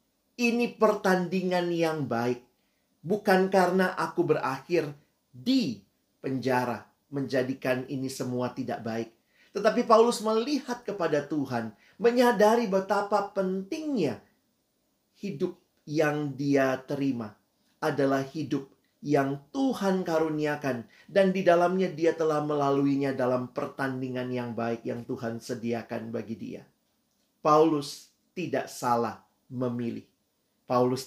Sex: male